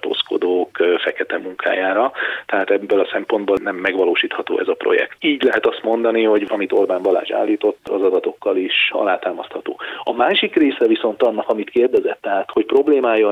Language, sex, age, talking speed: Hungarian, male, 30-49, 155 wpm